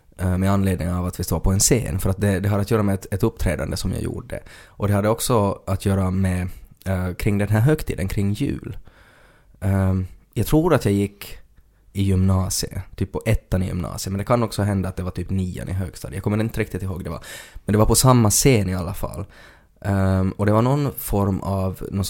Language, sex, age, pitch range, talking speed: Swedish, male, 20-39, 90-105 Hz, 235 wpm